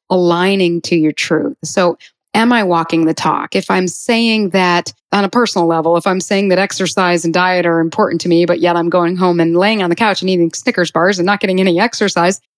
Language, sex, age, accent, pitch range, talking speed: English, female, 30-49, American, 170-210 Hz, 230 wpm